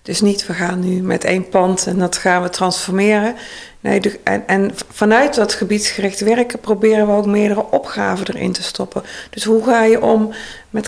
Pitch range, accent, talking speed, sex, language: 200-235 Hz, Dutch, 195 wpm, female, Dutch